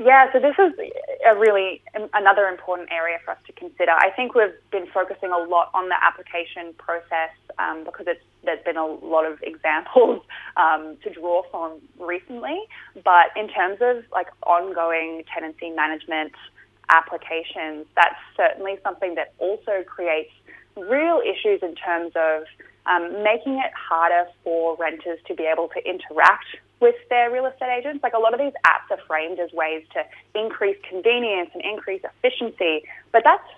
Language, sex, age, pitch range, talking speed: English, female, 20-39, 170-245 Hz, 165 wpm